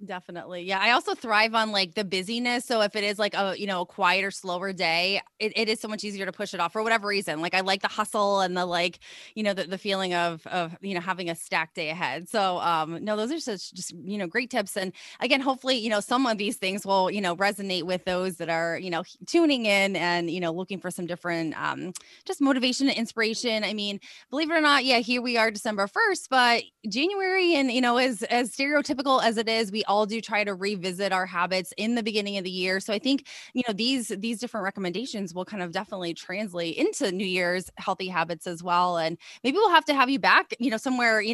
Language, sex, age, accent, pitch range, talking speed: English, female, 20-39, American, 185-235 Hz, 245 wpm